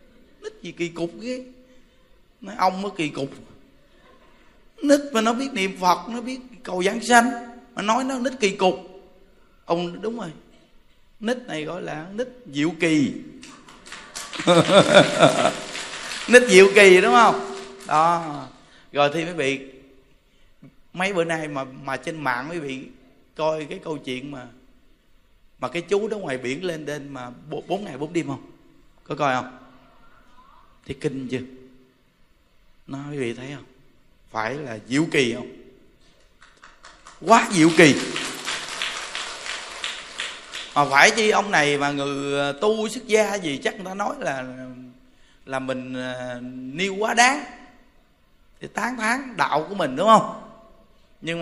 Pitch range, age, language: 135-220 Hz, 20-39, Vietnamese